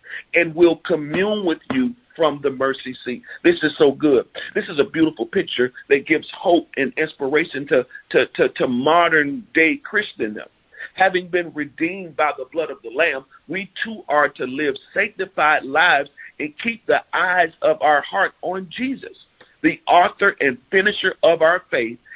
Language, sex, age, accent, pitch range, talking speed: English, male, 50-69, American, 155-235 Hz, 165 wpm